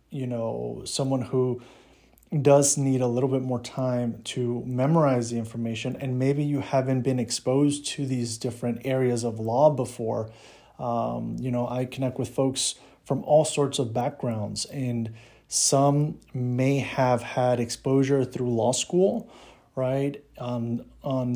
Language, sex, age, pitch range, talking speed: English, male, 30-49, 120-135 Hz, 145 wpm